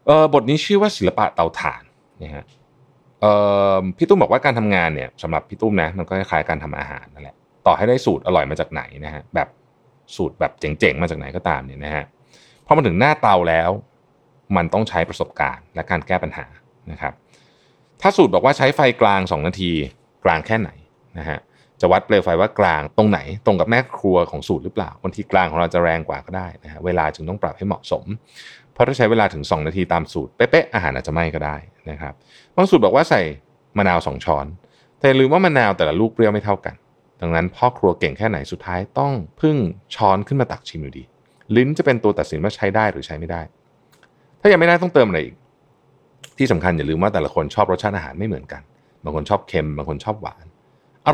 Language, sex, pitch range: Thai, male, 80-120 Hz